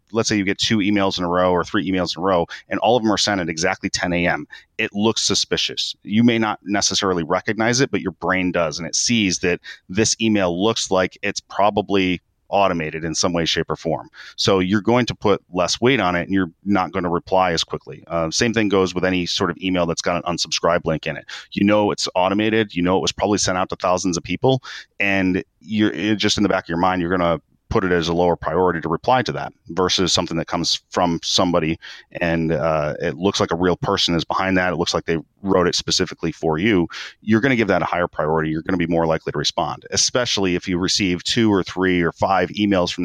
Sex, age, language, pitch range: male, 30-49, English, 85-100 Hz